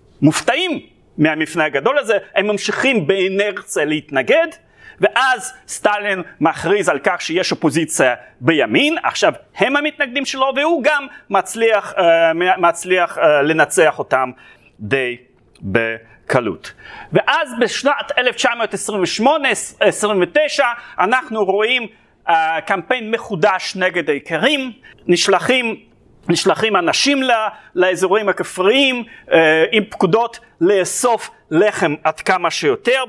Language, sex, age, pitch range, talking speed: Hebrew, male, 30-49, 180-275 Hz, 95 wpm